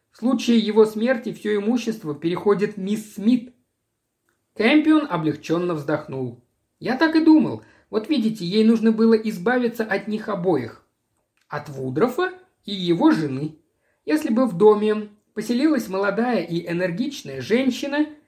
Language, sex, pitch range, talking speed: Russian, male, 160-240 Hz, 130 wpm